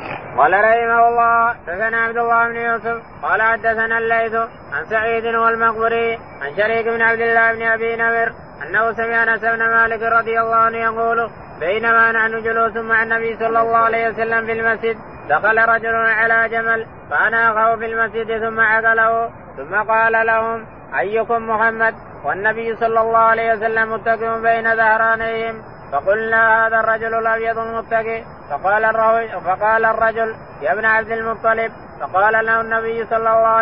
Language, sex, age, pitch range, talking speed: Arabic, male, 20-39, 225-230 Hz, 140 wpm